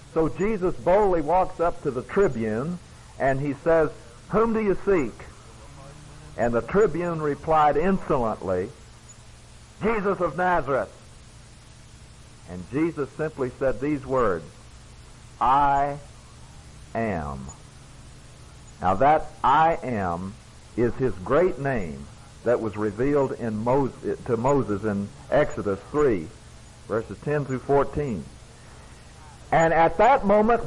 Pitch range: 125-185 Hz